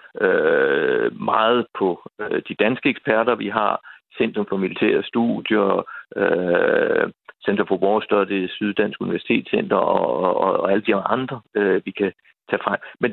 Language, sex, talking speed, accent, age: Danish, male, 140 wpm, native, 60-79